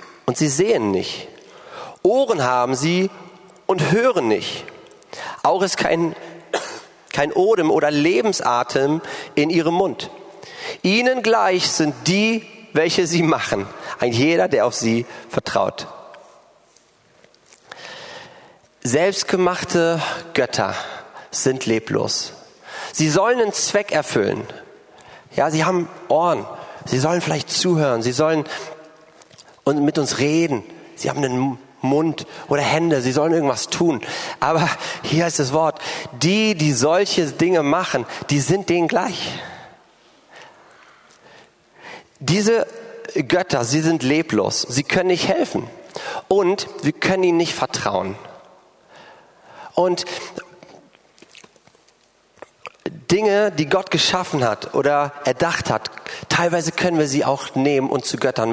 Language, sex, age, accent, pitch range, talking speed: German, male, 40-59, German, 145-185 Hz, 115 wpm